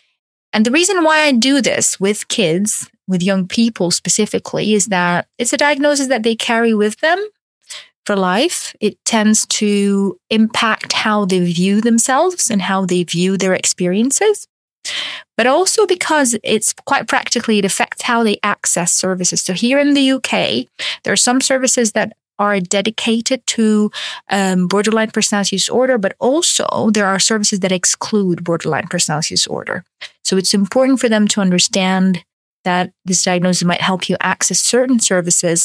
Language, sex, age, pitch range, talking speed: English, female, 30-49, 180-230 Hz, 160 wpm